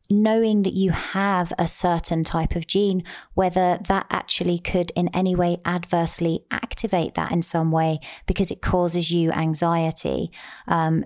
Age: 30-49